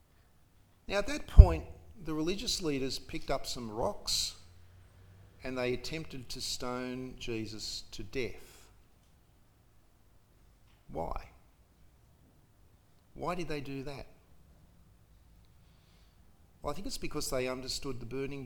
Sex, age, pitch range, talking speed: male, 50-69, 95-145 Hz, 110 wpm